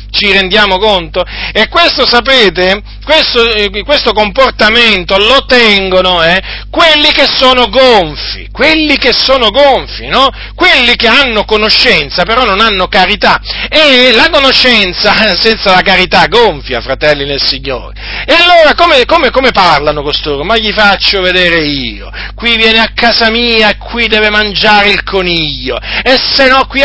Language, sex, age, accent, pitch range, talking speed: Italian, male, 40-59, native, 205-280 Hz, 145 wpm